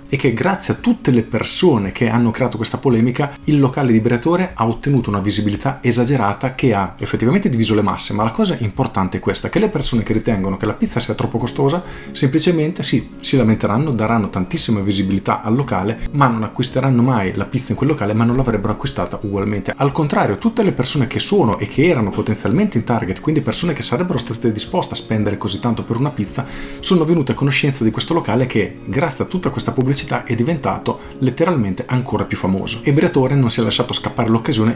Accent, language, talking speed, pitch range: native, Italian, 205 wpm, 105-125 Hz